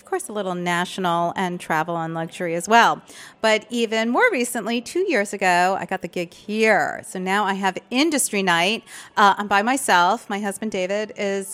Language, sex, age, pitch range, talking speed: English, female, 40-59, 180-240 Hz, 185 wpm